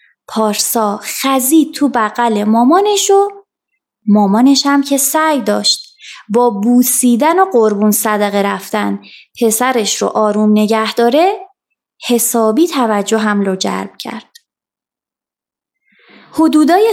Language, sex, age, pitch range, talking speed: Persian, female, 20-39, 215-330 Hz, 95 wpm